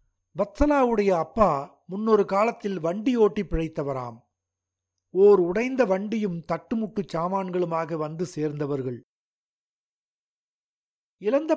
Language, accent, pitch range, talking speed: Tamil, native, 155-215 Hz, 75 wpm